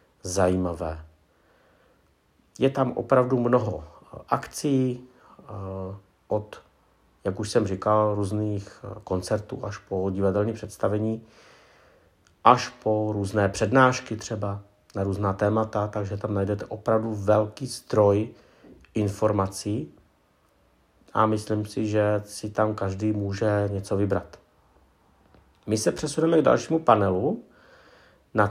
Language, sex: Czech, male